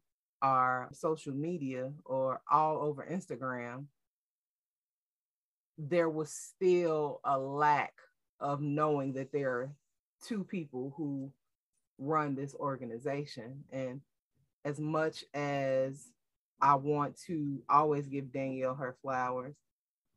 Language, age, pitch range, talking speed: English, 30-49, 135-155 Hz, 105 wpm